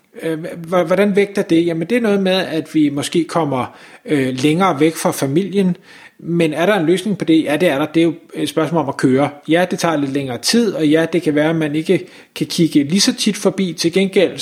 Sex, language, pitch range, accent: male, Danish, 160-195 Hz, native